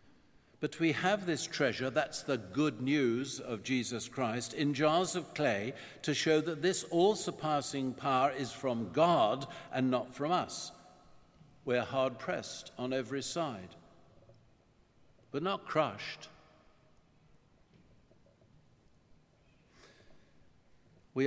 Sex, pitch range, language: male, 130-160 Hz, English